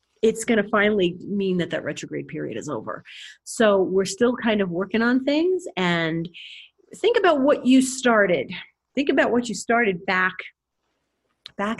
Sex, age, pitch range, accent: female, 40-59, 160-205 Hz, American